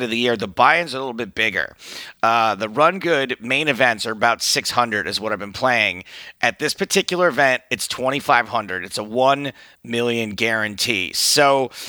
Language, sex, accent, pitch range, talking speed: English, male, American, 115-145 Hz, 180 wpm